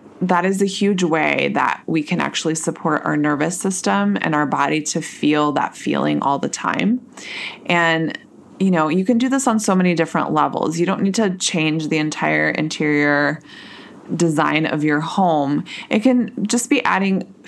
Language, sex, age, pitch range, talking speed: English, female, 20-39, 150-185 Hz, 180 wpm